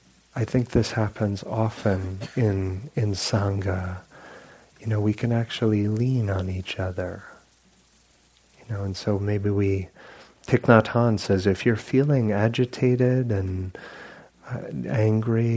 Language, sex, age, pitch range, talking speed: English, male, 40-59, 95-115 Hz, 130 wpm